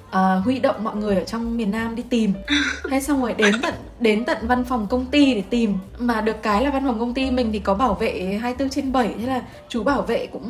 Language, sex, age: Vietnamese, female, 10-29